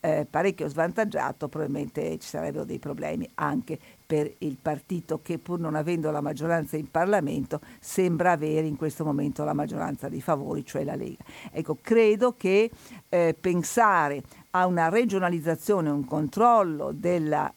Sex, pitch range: female, 155-180 Hz